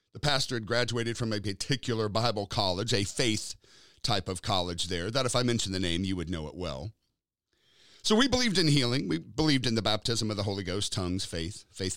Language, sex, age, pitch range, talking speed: English, male, 40-59, 105-165 Hz, 215 wpm